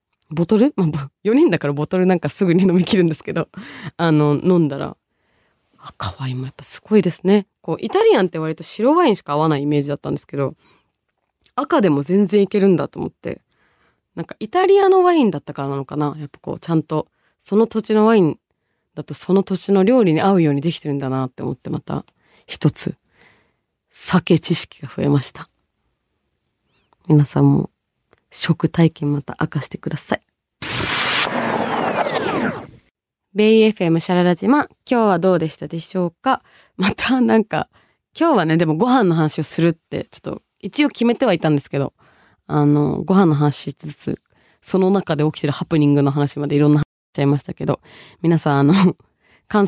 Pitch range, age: 150-195 Hz, 20-39